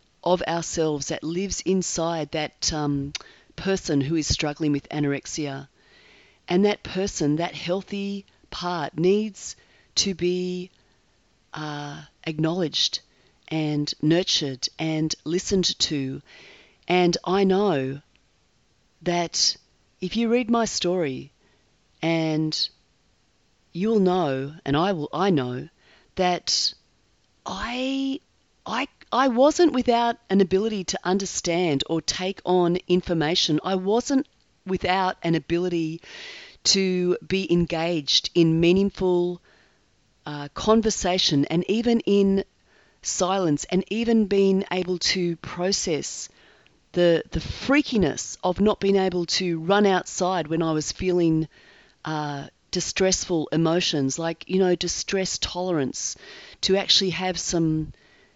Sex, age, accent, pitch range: female, 40-59, Australian, 155-195 Hz